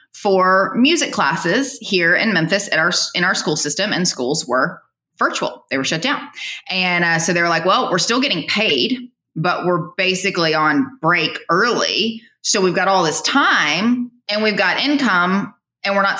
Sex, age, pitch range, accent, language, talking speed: female, 20-39, 170-220 Hz, American, English, 185 wpm